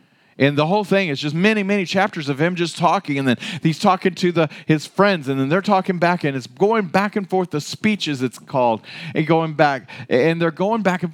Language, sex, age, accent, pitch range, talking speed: English, male, 40-59, American, 140-195 Hz, 235 wpm